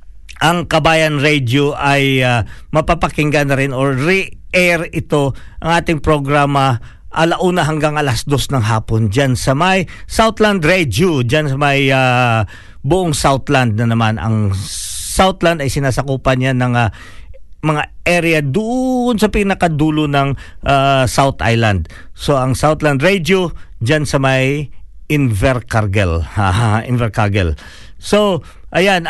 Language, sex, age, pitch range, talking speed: Filipino, male, 50-69, 125-160 Hz, 125 wpm